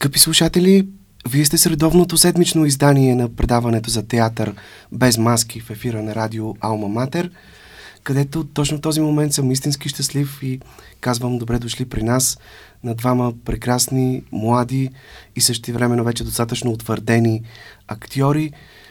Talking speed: 140 wpm